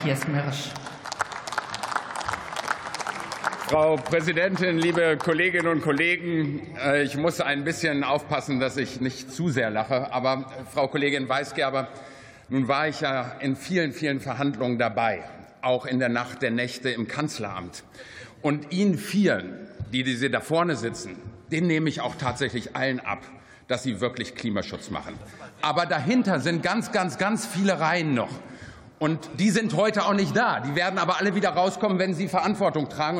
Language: German